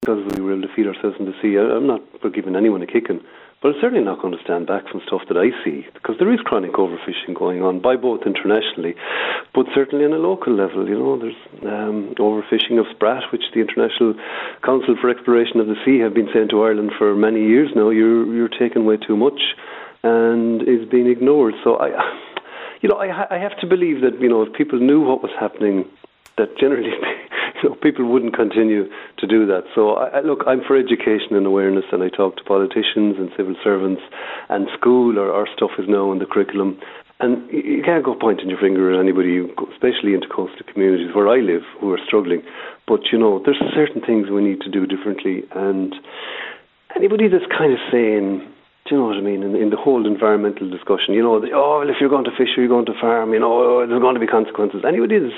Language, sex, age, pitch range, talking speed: English, male, 40-59, 100-125 Hz, 225 wpm